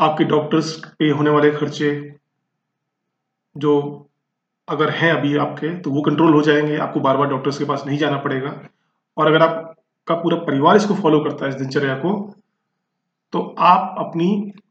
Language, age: Hindi, 40-59